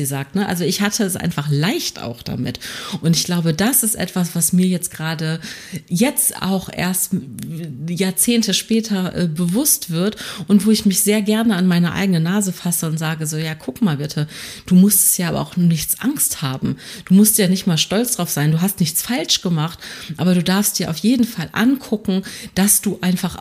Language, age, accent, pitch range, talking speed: German, 30-49, German, 165-200 Hz, 200 wpm